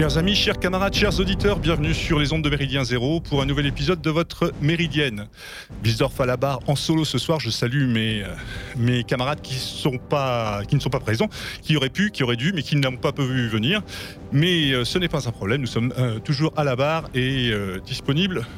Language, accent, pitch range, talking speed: French, French, 120-150 Hz, 225 wpm